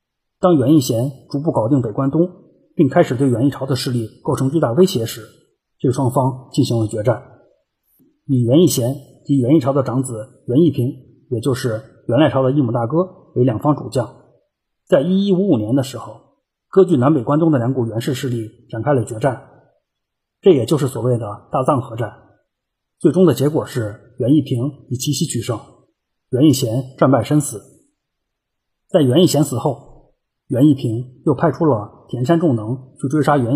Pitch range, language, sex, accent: 120-150 Hz, Chinese, male, native